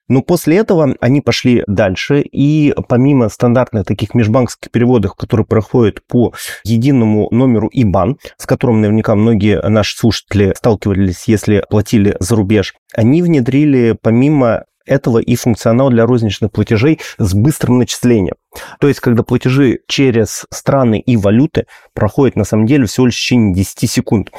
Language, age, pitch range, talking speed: Russian, 30-49, 110-135 Hz, 145 wpm